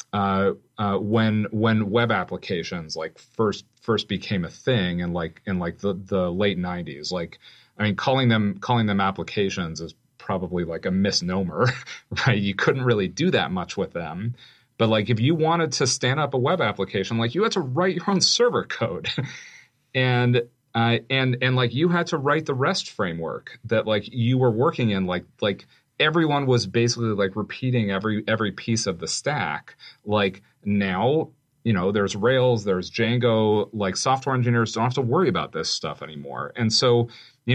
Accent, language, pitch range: American, English, 100-125 Hz